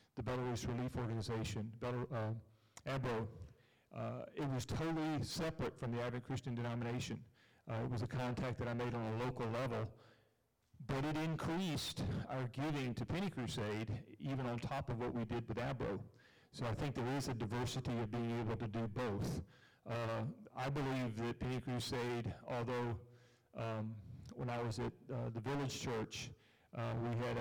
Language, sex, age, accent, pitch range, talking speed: English, male, 40-59, American, 115-130 Hz, 170 wpm